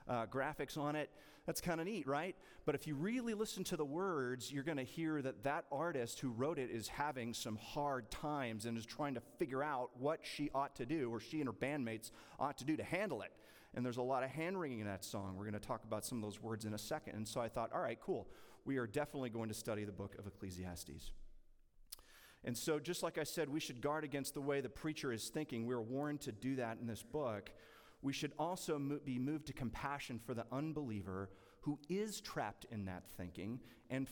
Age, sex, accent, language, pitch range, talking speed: 30-49, male, American, English, 110-145 Hz, 235 wpm